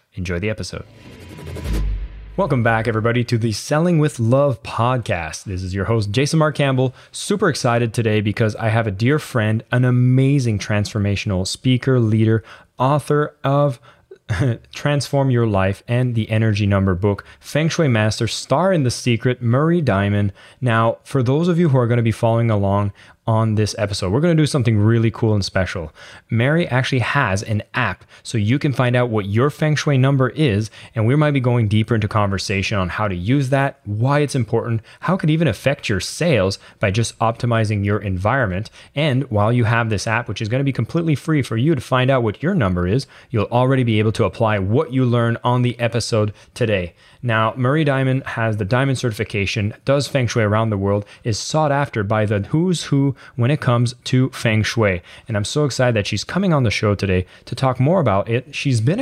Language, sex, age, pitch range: English, male, 20-39, 105-135 Hz